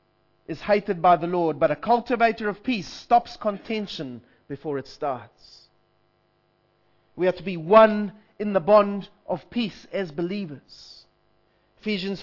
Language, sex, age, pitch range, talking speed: English, male, 30-49, 150-205 Hz, 135 wpm